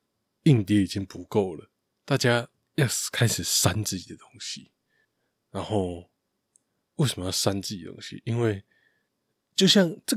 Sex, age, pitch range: male, 20-39, 100-115 Hz